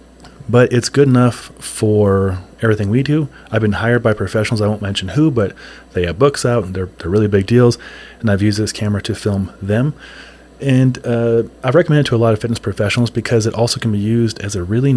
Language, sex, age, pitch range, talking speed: English, male, 30-49, 100-120 Hz, 225 wpm